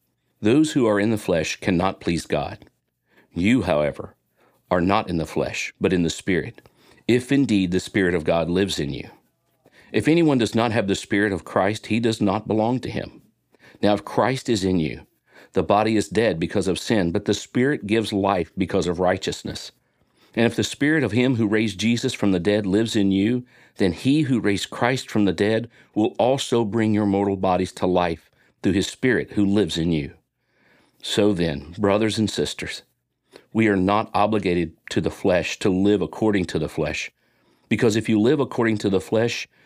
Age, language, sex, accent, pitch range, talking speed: 50-69, English, male, American, 95-115 Hz, 195 wpm